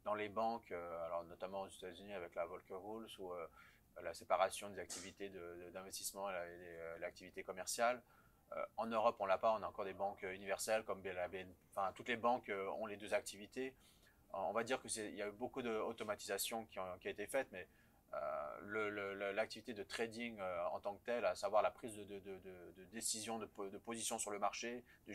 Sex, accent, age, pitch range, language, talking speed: male, French, 30-49, 95-115 Hz, French, 215 wpm